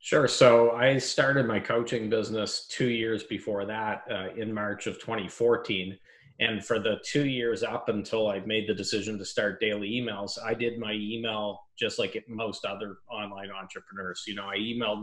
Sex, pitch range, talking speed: male, 100-120 Hz, 180 wpm